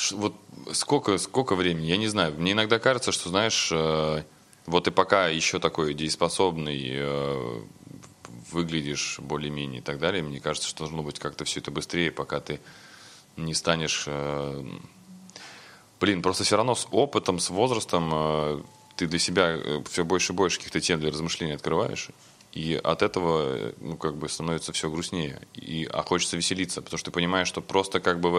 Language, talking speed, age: Russian, 160 wpm, 20-39